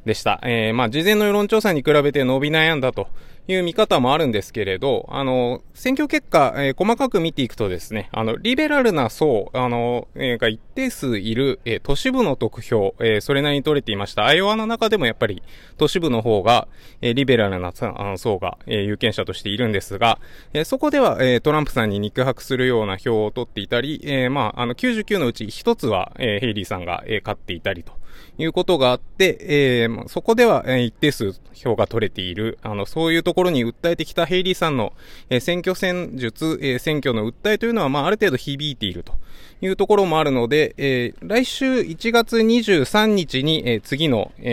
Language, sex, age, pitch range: Japanese, male, 20-39, 110-165 Hz